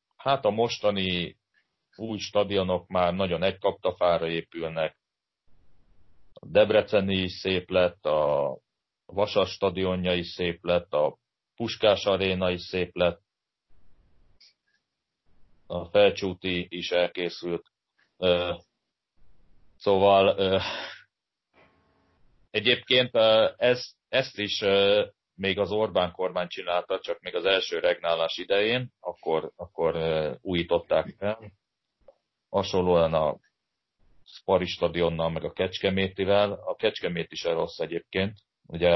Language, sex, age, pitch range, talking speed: Hungarian, male, 30-49, 85-105 Hz, 95 wpm